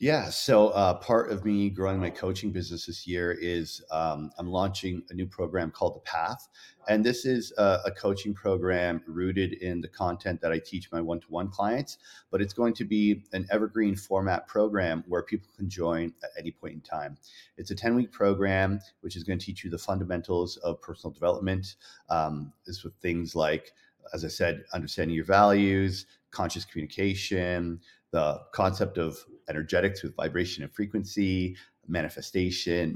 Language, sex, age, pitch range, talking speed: English, male, 40-59, 85-100 Hz, 170 wpm